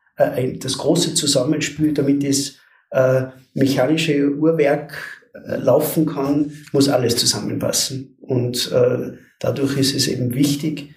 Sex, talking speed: male, 100 wpm